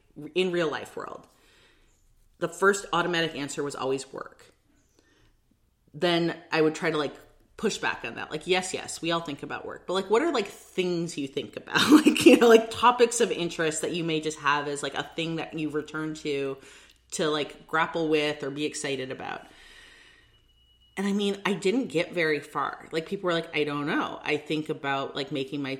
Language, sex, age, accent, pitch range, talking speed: English, female, 30-49, American, 145-190 Hz, 200 wpm